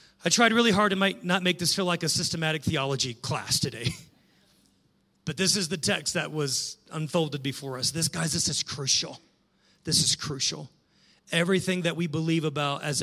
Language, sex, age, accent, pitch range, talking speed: English, male, 40-59, American, 150-195 Hz, 180 wpm